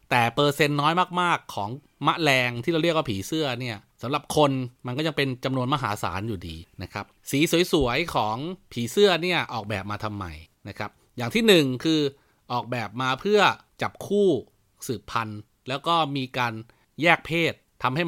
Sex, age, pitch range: male, 30-49, 115-160 Hz